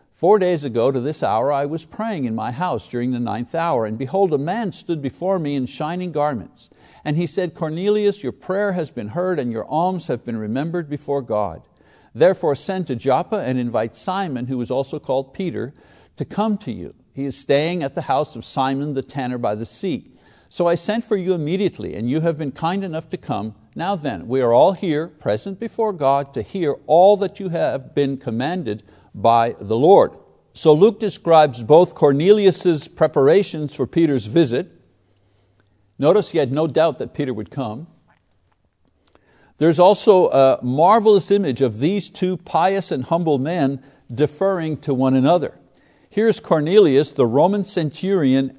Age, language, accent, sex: 60-79, English, American, male